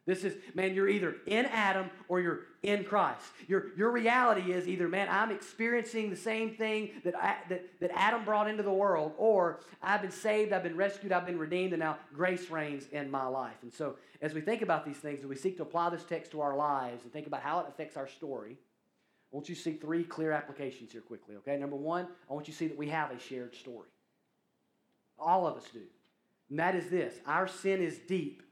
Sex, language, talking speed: male, English, 225 wpm